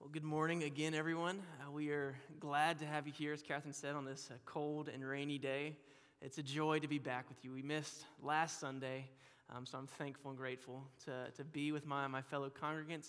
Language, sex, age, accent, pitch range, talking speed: English, male, 20-39, American, 135-165 Hz, 225 wpm